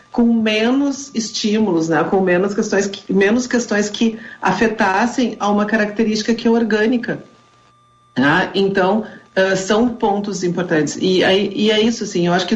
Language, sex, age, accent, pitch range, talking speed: Portuguese, female, 40-59, Brazilian, 175-205 Hz, 160 wpm